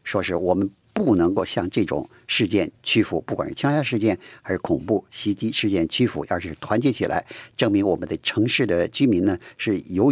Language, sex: Chinese, male